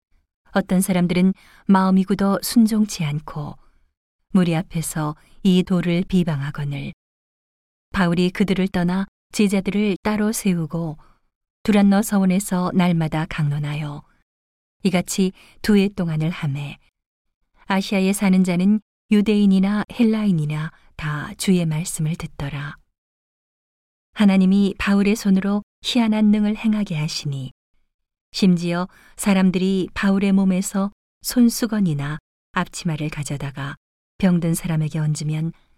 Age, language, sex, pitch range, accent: 40-59, Korean, female, 160-200 Hz, native